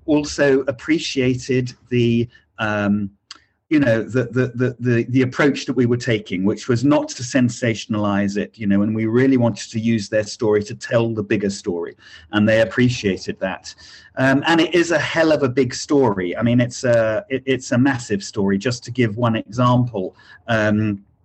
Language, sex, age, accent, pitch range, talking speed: English, male, 40-59, British, 115-135 Hz, 185 wpm